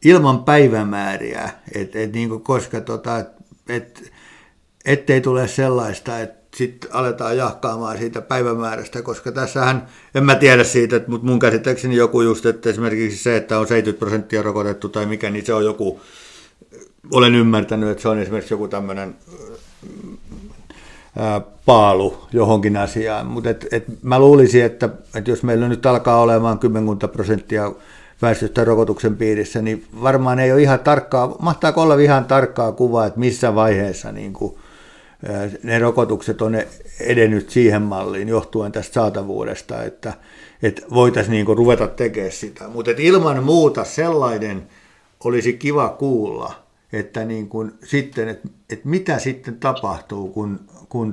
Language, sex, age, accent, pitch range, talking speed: Finnish, male, 60-79, native, 110-125 Hz, 140 wpm